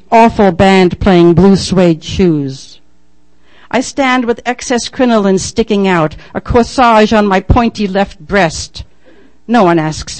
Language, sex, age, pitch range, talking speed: English, female, 60-79, 160-210 Hz, 135 wpm